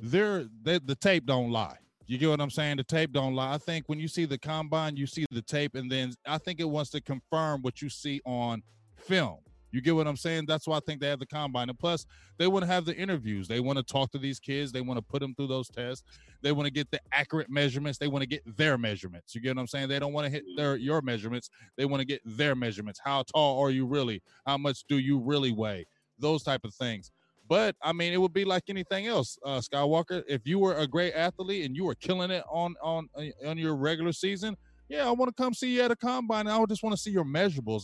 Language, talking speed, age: English, 265 wpm, 20-39